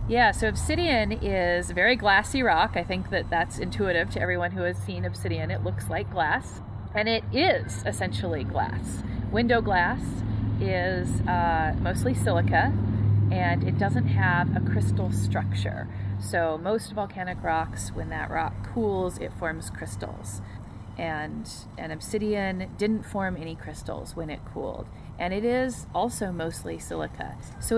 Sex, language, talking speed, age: female, English, 150 wpm, 30-49